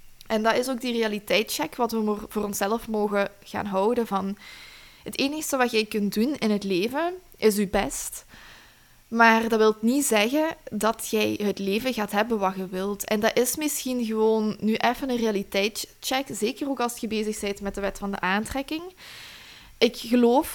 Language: Dutch